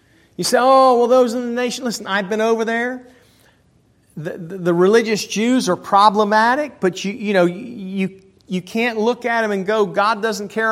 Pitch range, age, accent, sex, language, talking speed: 175-230 Hz, 40-59, American, male, English, 185 wpm